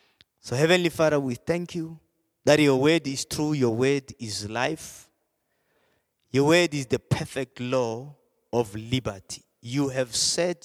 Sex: male